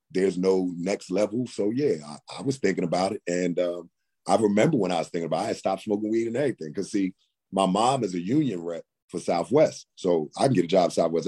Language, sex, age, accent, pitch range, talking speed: English, male, 30-49, American, 85-95 Hz, 250 wpm